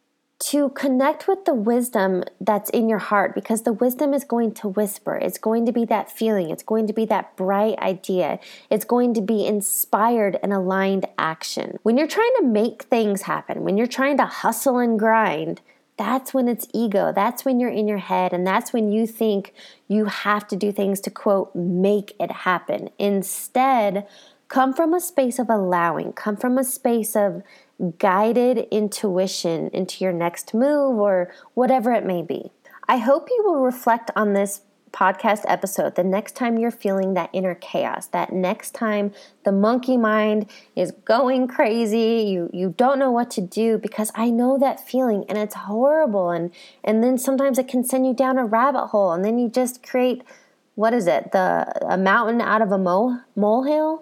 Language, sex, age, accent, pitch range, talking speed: English, female, 20-39, American, 200-255 Hz, 185 wpm